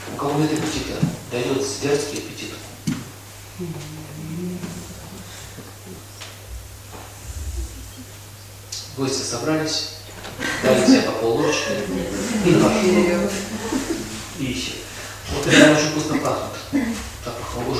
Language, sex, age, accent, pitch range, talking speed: Russian, male, 40-59, native, 100-145 Hz, 75 wpm